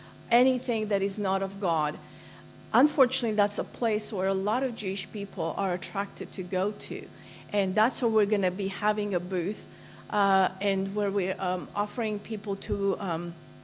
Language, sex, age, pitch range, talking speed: English, female, 50-69, 180-210 Hz, 175 wpm